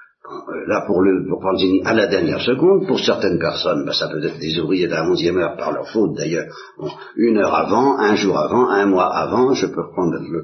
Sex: male